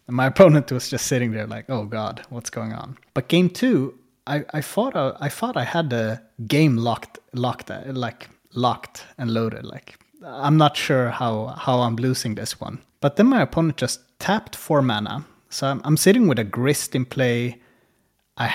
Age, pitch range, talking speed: 30-49, 115-145 Hz, 195 wpm